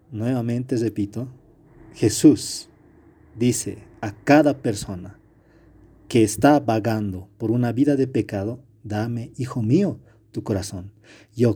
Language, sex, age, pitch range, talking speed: Spanish, male, 40-59, 105-140 Hz, 110 wpm